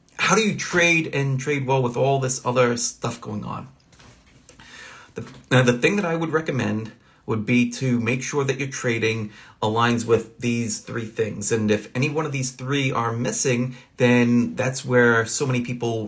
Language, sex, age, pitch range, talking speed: English, male, 30-49, 110-135 Hz, 185 wpm